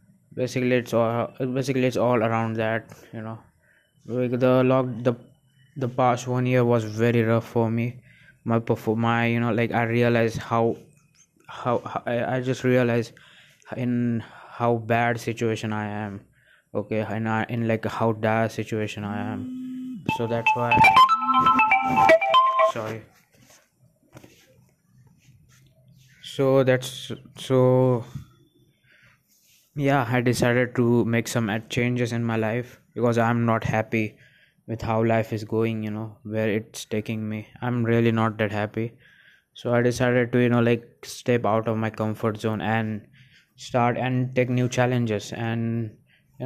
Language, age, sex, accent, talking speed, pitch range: English, 20-39, male, Indian, 140 wpm, 115-130 Hz